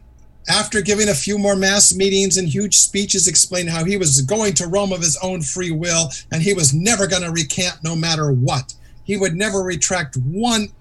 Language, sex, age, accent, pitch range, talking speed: English, male, 50-69, American, 135-190 Hz, 200 wpm